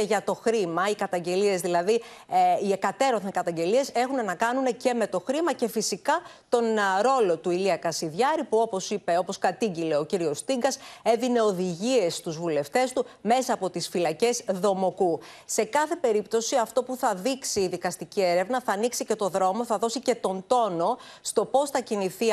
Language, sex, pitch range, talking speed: Greek, female, 180-240 Hz, 180 wpm